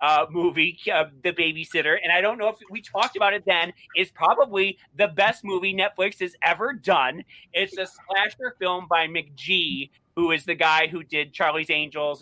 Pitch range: 155-190 Hz